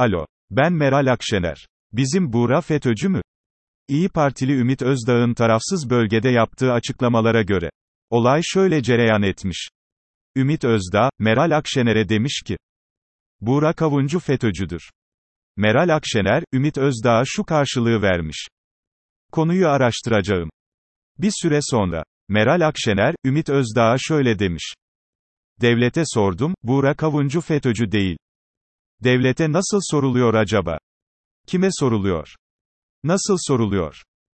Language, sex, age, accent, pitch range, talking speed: Turkish, male, 40-59, native, 105-155 Hz, 110 wpm